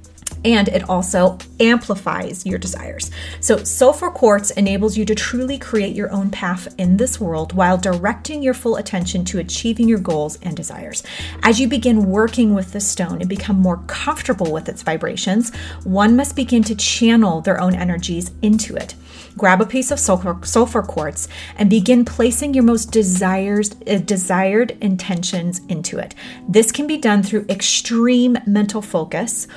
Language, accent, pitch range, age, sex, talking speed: English, American, 180-230 Hz, 30-49, female, 160 wpm